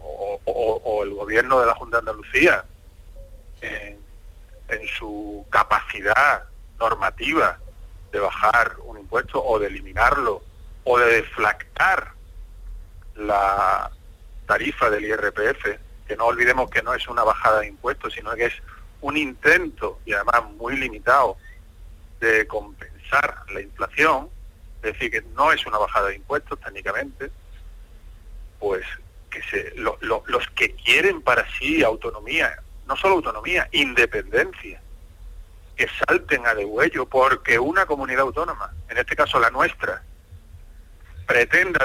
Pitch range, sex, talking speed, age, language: 80-130 Hz, male, 125 wpm, 40-59, Spanish